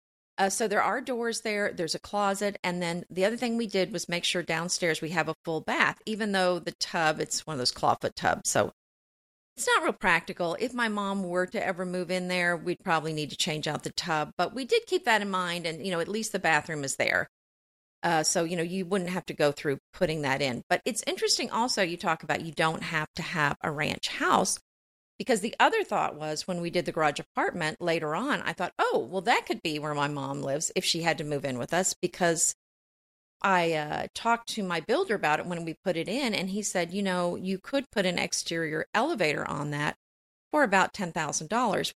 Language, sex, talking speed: English, female, 235 wpm